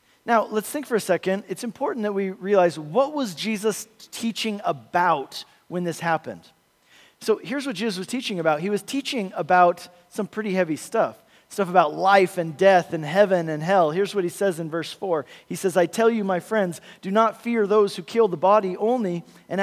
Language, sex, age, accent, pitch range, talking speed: English, male, 40-59, American, 185-235 Hz, 205 wpm